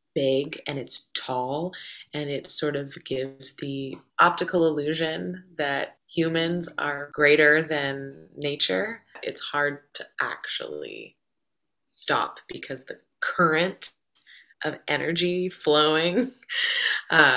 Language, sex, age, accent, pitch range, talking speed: English, female, 20-39, American, 135-160 Hz, 105 wpm